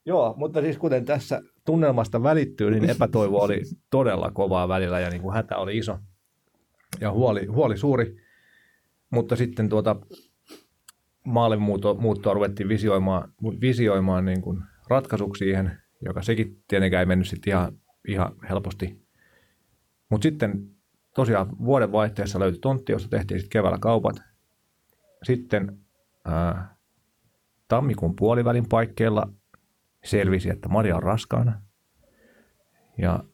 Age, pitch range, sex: 40-59, 95-115 Hz, male